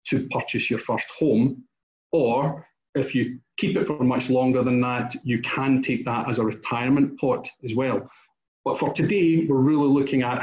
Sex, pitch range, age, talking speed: male, 120-140 Hz, 40-59, 185 wpm